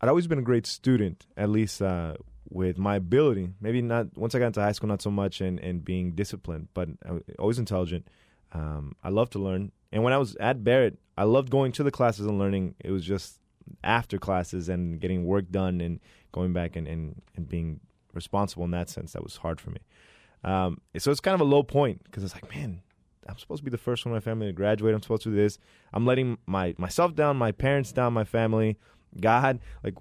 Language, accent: English, American